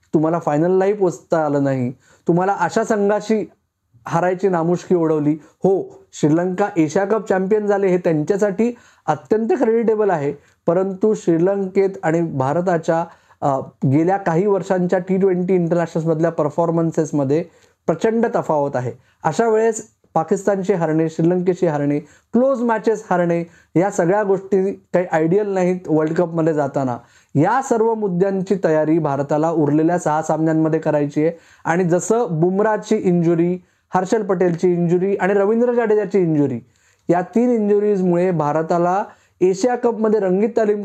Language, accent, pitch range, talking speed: Marathi, native, 160-205 Hz, 120 wpm